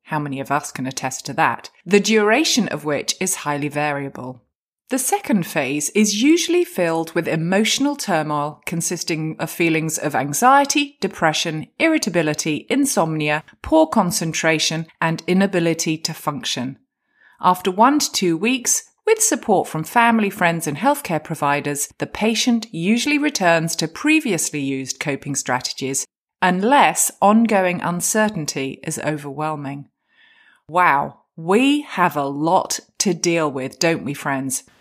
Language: English